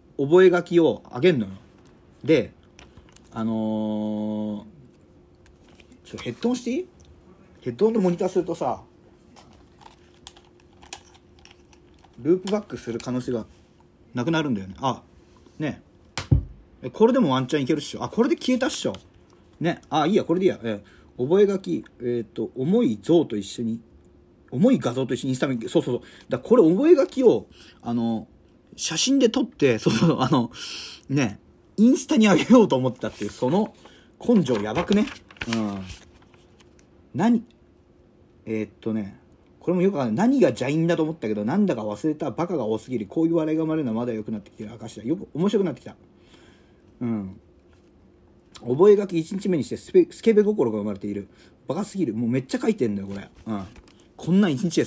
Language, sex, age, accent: Japanese, male, 40-59, native